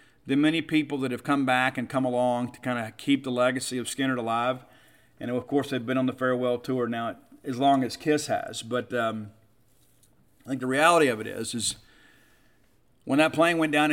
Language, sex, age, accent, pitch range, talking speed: English, male, 40-59, American, 125-150 Hz, 210 wpm